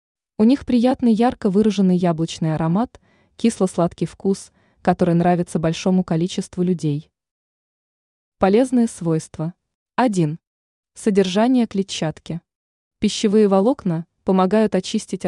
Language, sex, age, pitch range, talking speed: Russian, female, 20-39, 170-215 Hz, 90 wpm